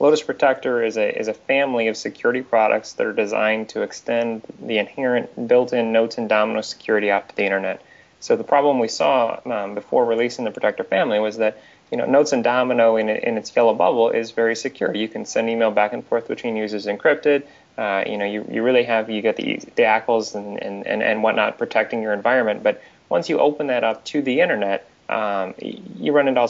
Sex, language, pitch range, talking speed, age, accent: male, English, 110-135 Hz, 210 wpm, 20-39, American